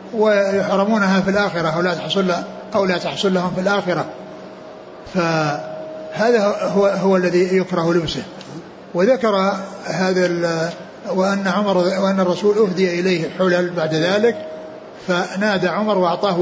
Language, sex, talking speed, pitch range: Arabic, male, 115 wpm, 175-200 Hz